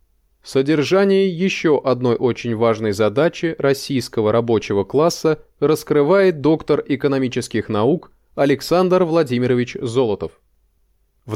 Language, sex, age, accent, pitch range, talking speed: Russian, male, 20-39, native, 125-170 Hz, 95 wpm